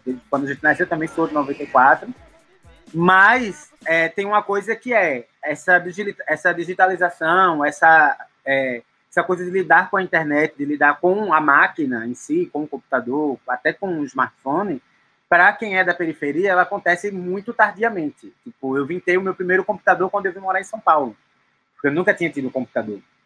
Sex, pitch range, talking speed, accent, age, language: male, 155-200 Hz, 185 wpm, Brazilian, 20-39, Portuguese